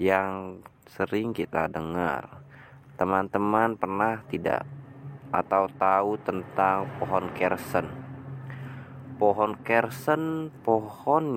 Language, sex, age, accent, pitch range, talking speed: English, male, 20-39, Indonesian, 90-115 Hz, 80 wpm